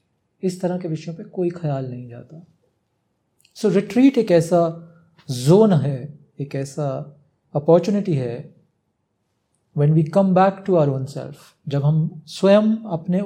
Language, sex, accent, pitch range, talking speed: Hindi, male, native, 145-190 Hz, 140 wpm